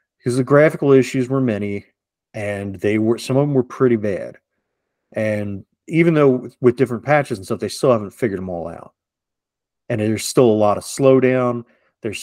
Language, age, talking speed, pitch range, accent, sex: English, 30-49, 185 wpm, 110-135 Hz, American, male